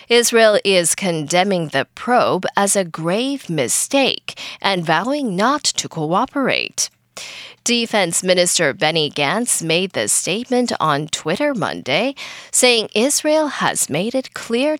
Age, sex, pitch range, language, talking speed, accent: 10-29, female, 175-255 Hz, English, 120 wpm, American